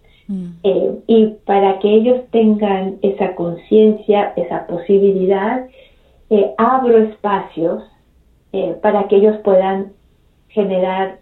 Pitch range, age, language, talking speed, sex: 180-215 Hz, 40-59, English, 100 wpm, female